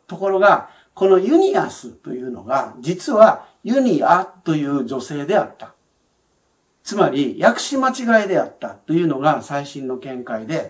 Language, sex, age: Japanese, male, 60-79